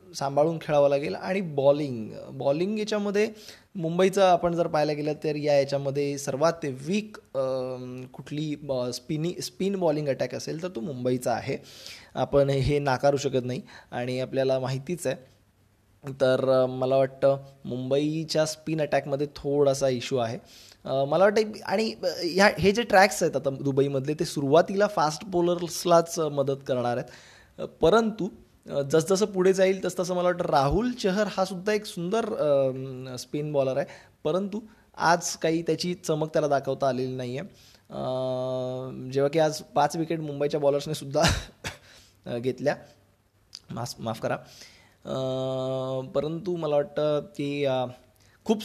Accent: native